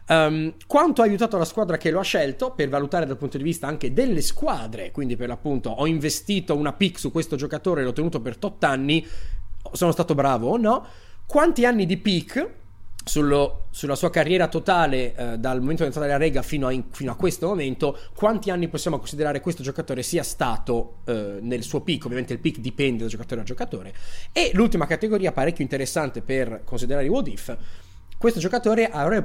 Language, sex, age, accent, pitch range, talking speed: Italian, male, 30-49, native, 125-190 Hz, 195 wpm